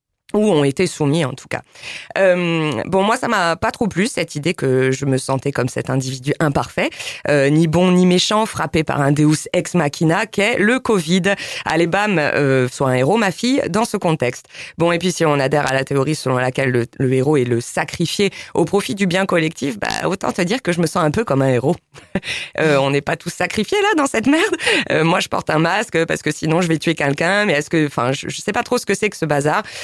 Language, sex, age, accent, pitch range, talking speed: French, female, 20-39, French, 145-200 Hz, 245 wpm